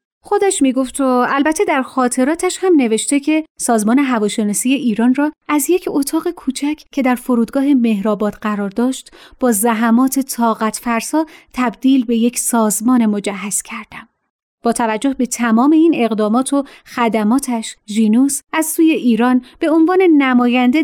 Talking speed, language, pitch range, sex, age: 140 wpm, Persian, 220-285 Hz, female, 30-49